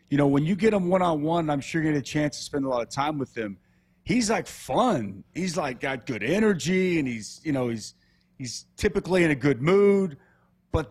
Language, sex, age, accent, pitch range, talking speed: English, male, 30-49, American, 120-150 Hz, 225 wpm